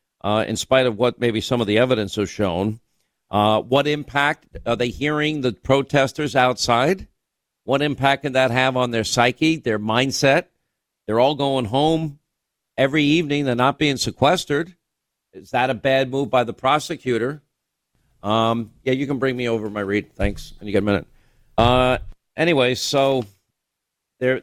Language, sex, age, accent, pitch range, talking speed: English, male, 50-69, American, 120-145 Hz, 165 wpm